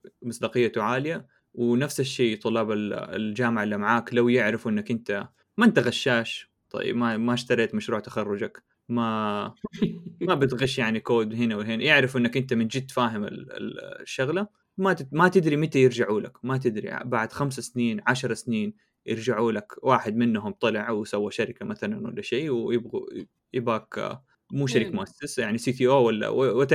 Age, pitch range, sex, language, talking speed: 20-39, 110-135 Hz, male, Arabic, 155 wpm